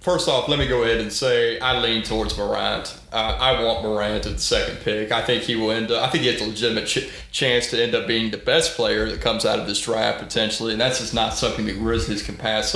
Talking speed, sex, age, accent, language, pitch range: 265 wpm, male, 30-49, American, English, 110-135 Hz